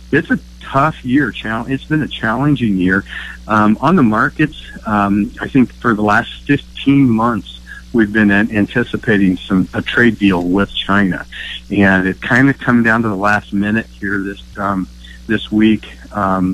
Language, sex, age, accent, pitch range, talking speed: English, male, 50-69, American, 95-115 Hz, 165 wpm